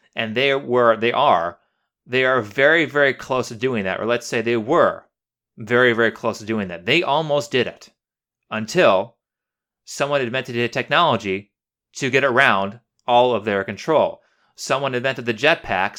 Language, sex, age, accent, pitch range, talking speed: English, male, 30-49, American, 110-135 Hz, 165 wpm